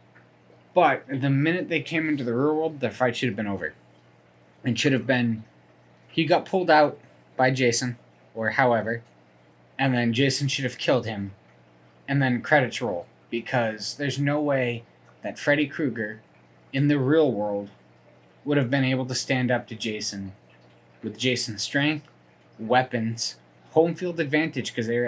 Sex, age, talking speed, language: male, 20-39, 165 wpm, English